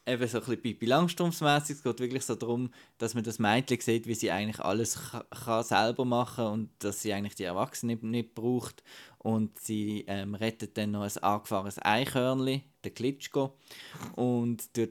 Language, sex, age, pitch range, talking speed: German, male, 20-39, 105-125 Hz, 165 wpm